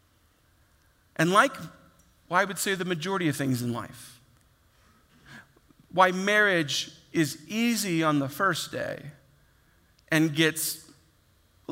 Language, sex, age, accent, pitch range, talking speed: English, male, 40-59, American, 175-270 Hz, 120 wpm